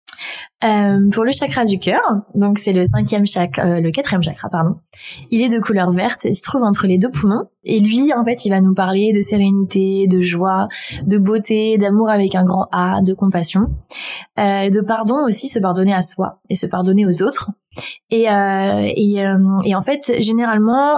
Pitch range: 200-230 Hz